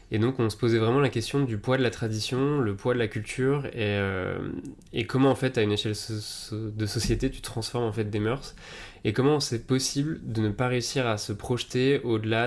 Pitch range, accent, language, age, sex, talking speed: 105-125 Hz, French, French, 20-39, male, 230 wpm